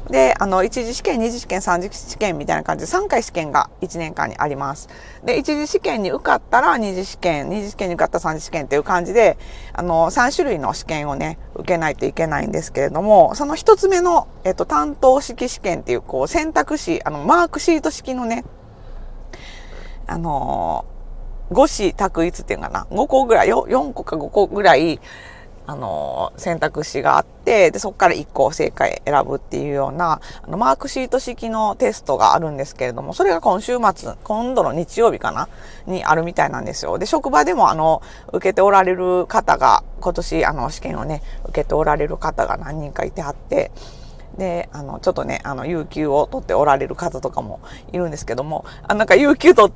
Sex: female